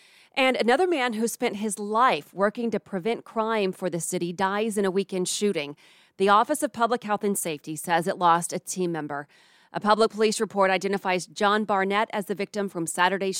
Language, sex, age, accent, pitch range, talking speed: English, female, 30-49, American, 180-220 Hz, 195 wpm